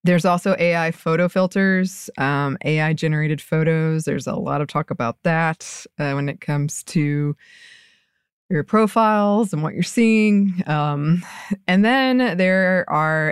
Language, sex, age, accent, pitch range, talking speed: English, female, 20-39, American, 160-200 Hz, 140 wpm